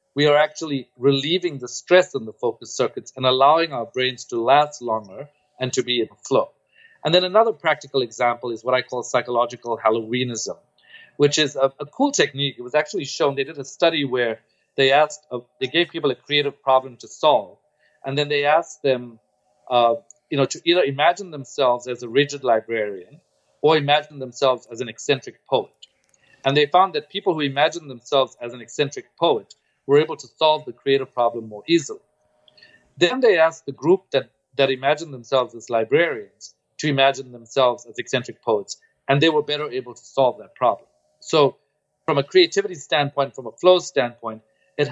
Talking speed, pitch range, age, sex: 185 wpm, 125-155 Hz, 40-59, male